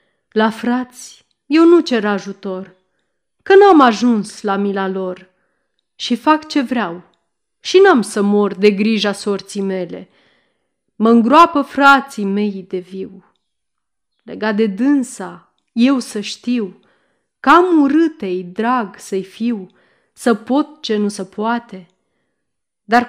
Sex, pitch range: female, 205-275 Hz